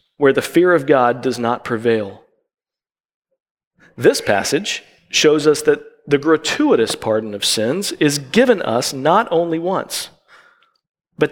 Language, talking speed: English, 135 wpm